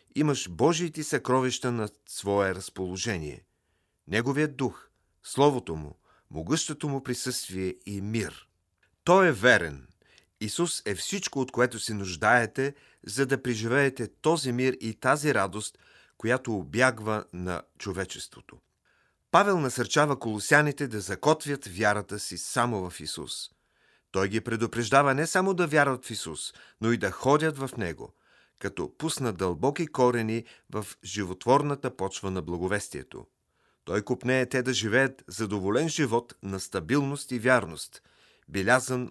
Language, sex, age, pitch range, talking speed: Bulgarian, male, 40-59, 100-140 Hz, 125 wpm